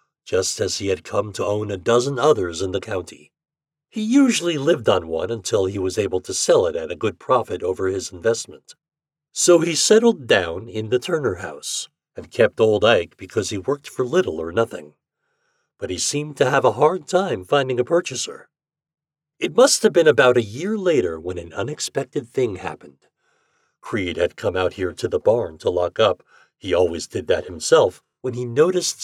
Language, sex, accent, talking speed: English, male, American, 195 wpm